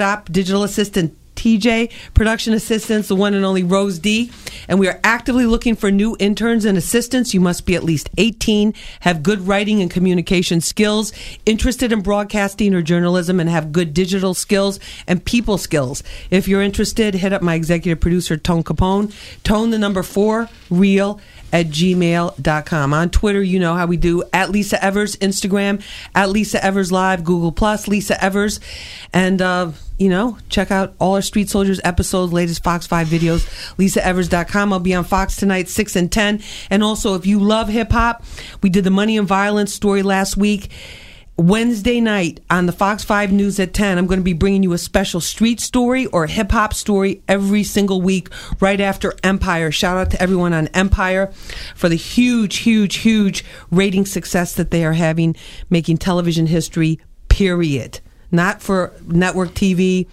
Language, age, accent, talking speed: English, 40-59, American, 175 wpm